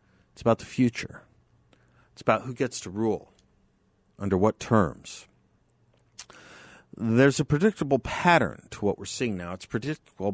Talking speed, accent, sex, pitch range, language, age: 140 wpm, American, male, 105-130 Hz, English, 50-69